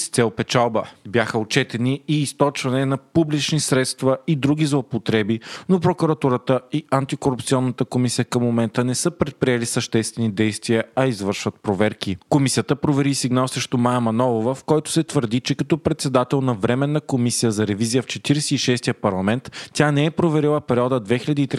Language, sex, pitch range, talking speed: Bulgarian, male, 115-140 Hz, 145 wpm